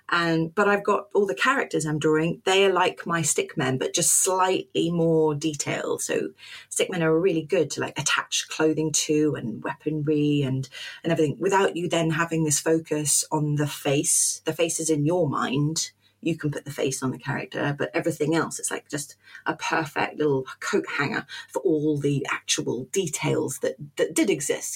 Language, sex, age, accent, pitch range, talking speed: English, female, 30-49, British, 150-190 Hz, 190 wpm